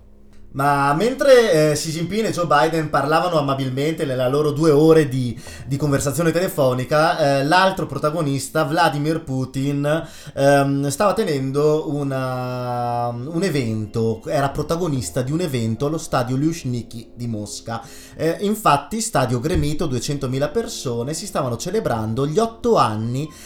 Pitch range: 120-150 Hz